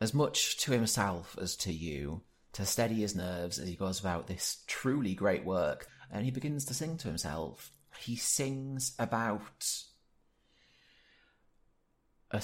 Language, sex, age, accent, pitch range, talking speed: English, male, 30-49, British, 85-110 Hz, 145 wpm